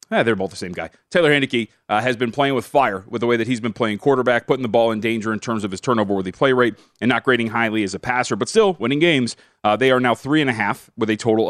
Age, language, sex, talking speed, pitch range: 30-49, English, male, 265 wpm, 110-135 Hz